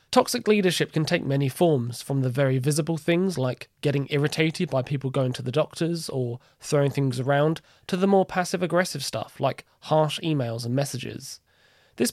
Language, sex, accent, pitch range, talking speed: English, male, British, 135-170 Hz, 180 wpm